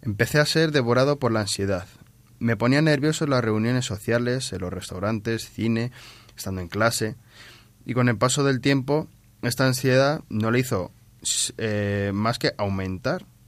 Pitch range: 105-125 Hz